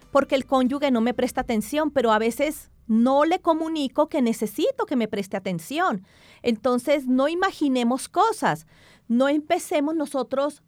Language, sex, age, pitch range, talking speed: English, female, 40-59, 230-285 Hz, 145 wpm